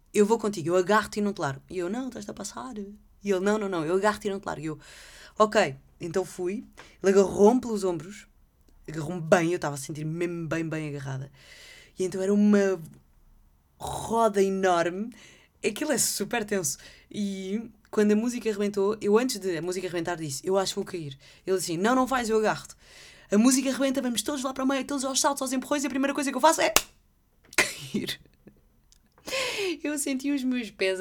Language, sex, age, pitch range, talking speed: Portuguese, female, 20-39, 180-235 Hz, 210 wpm